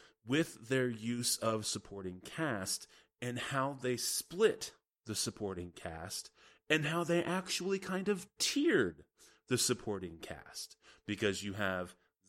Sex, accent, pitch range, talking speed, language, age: male, American, 95-135 Hz, 125 wpm, English, 30-49